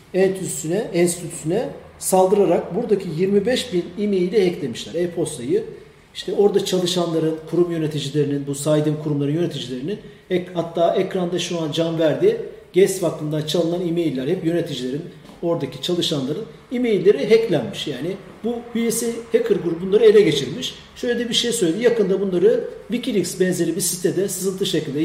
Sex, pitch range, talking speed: male, 160-210 Hz, 130 wpm